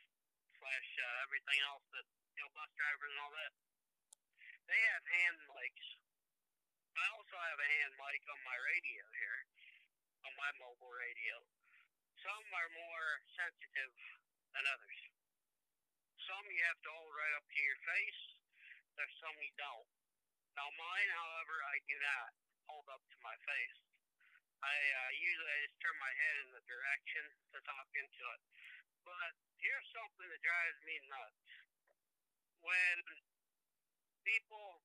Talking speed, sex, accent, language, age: 145 wpm, male, American, English, 50-69